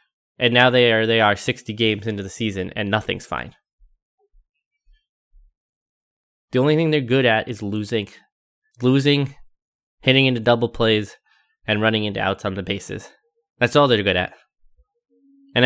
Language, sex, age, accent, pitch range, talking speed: English, male, 20-39, American, 110-140 Hz, 155 wpm